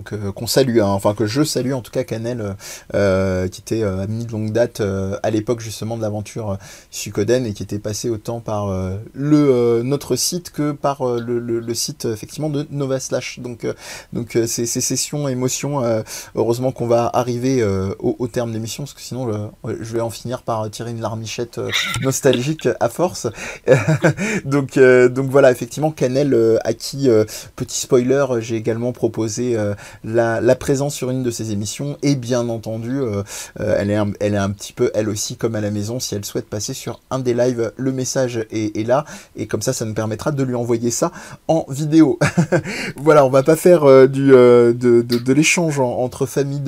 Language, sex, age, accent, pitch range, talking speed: French, male, 20-39, French, 115-140 Hz, 215 wpm